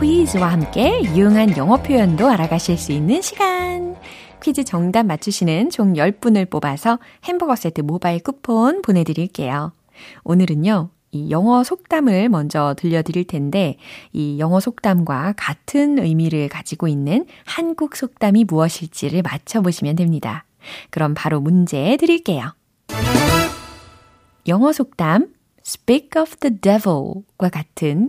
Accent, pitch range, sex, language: native, 165-255 Hz, female, Korean